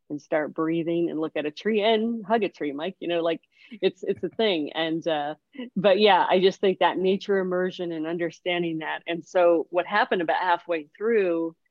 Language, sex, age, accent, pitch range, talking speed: English, female, 40-59, American, 160-195 Hz, 205 wpm